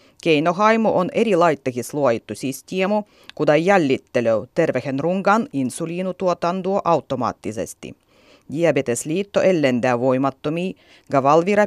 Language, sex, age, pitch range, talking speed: Finnish, female, 30-49, 135-195 Hz, 85 wpm